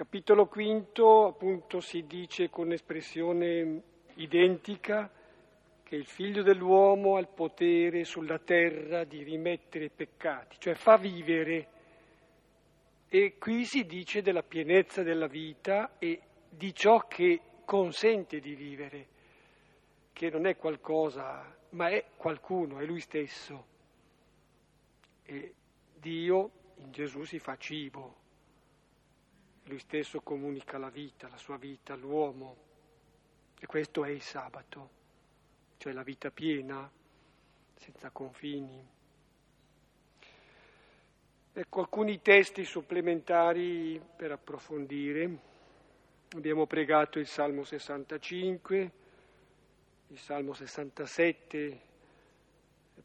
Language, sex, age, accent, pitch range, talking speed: Italian, male, 50-69, native, 150-185 Hz, 100 wpm